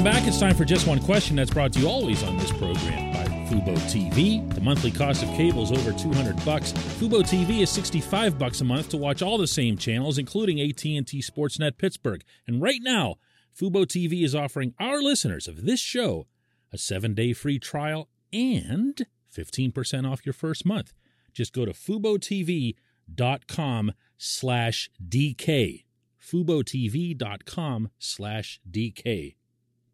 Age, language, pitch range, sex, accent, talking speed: 40-59, English, 110-160 Hz, male, American, 145 wpm